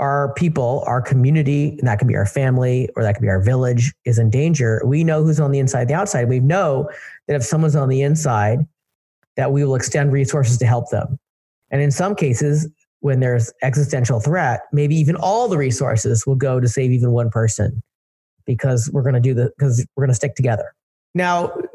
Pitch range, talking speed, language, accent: 120-150 Hz, 210 wpm, English, American